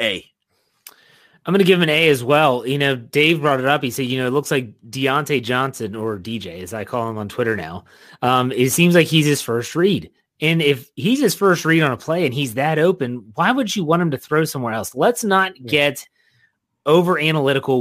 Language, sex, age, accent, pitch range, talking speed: English, male, 30-49, American, 130-175 Hz, 235 wpm